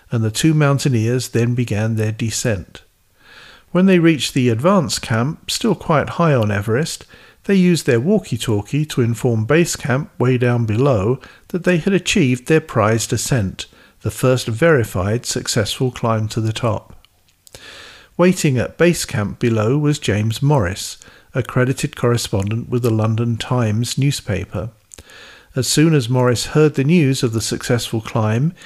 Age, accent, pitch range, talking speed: 50-69, British, 110-140 Hz, 150 wpm